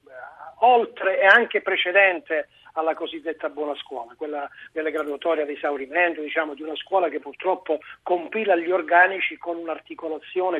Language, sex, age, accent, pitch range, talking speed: Italian, male, 40-59, native, 155-195 Hz, 135 wpm